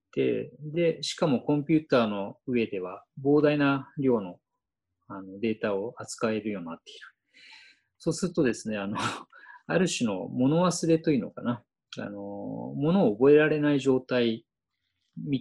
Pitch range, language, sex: 115-170 Hz, Japanese, male